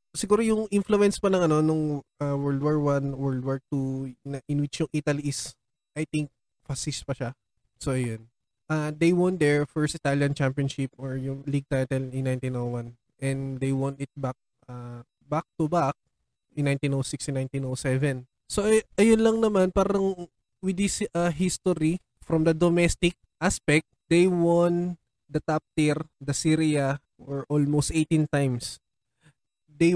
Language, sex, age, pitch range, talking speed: Filipino, male, 20-39, 135-165 Hz, 155 wpm